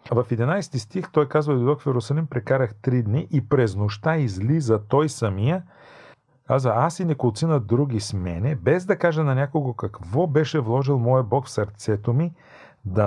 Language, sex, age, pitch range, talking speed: Bulgarian, male, 40-59, 110-150 Hz, 175 wpm